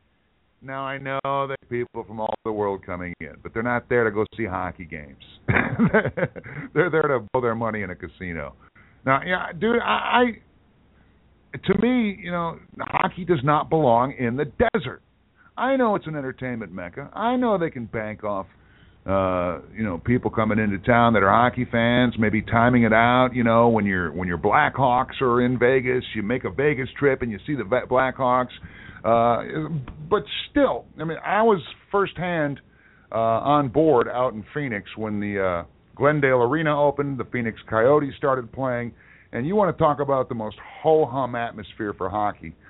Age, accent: 50-69, American